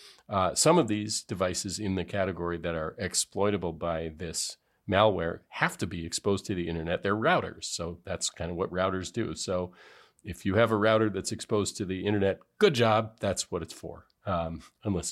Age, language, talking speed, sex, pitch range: 40-59, English, 195 wpm, male, 85-110 Hz